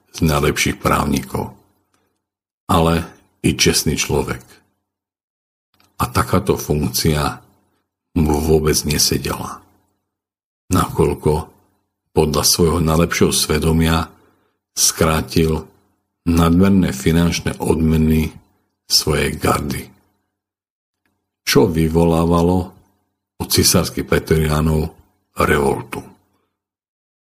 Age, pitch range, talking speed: 50-69, 80-95 Hz, 65 wpm